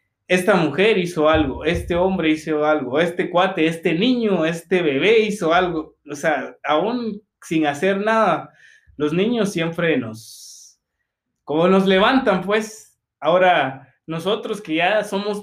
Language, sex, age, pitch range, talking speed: Spanish, male, 20-39, 150-210 Hz, 135 wpm